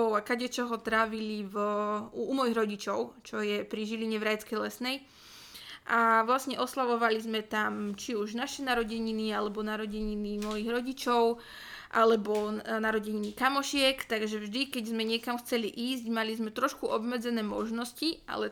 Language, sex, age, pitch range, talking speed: Slovak, female, 20-39, 215-240 Hz, 145 wpm